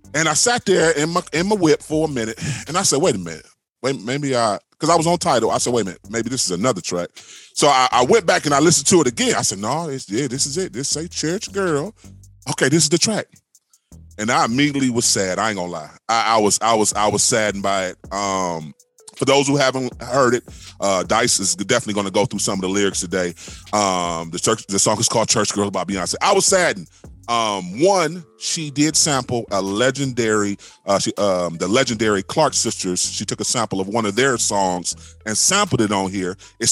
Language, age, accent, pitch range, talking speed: English, 30-49, American, 100-165 Hz, 235 wpm